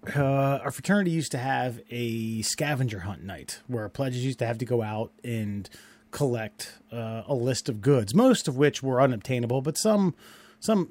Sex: male